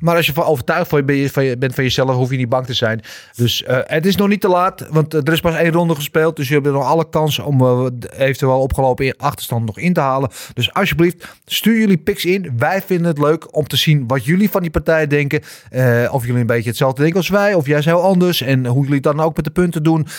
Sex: male